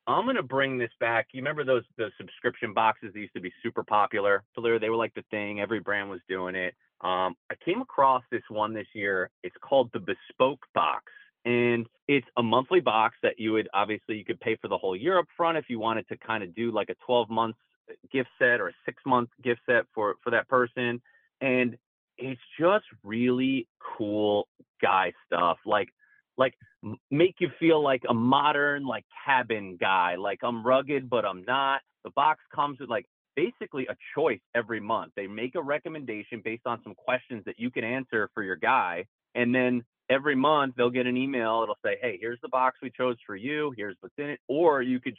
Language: English